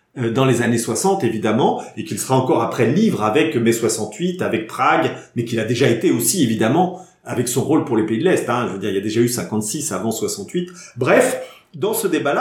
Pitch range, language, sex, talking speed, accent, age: 115-165 Hz, English, male, 225 wpm, French, 40-59